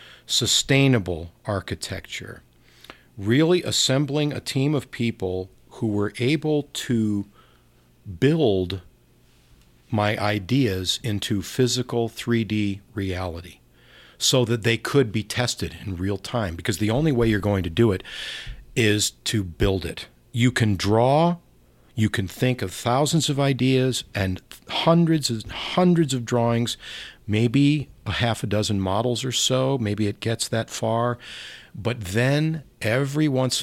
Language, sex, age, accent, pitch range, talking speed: English, male, 50-69, American, 95-125 Hz, 130 wpm